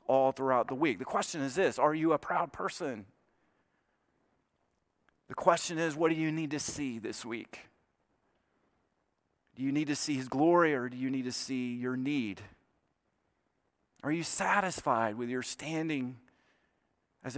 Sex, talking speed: male, 160 wpm